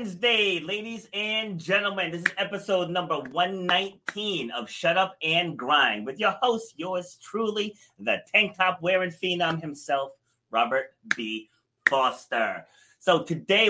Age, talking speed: 30-49, 125 wpm